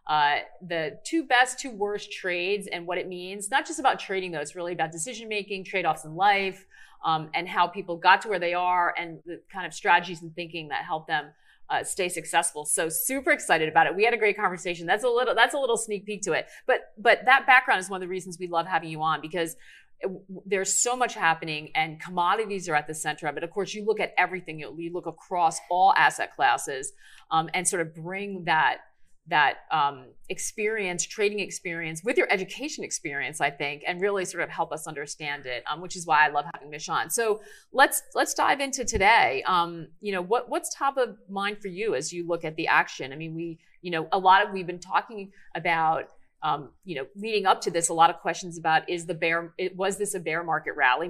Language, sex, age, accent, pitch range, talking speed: English, female, 40-59, American, 165-205 Hz, 230 wpm